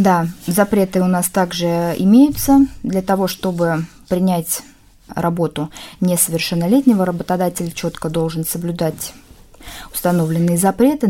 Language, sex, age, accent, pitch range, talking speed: Russian, female, 20-39, native, 170-200 Hz, 95 wpm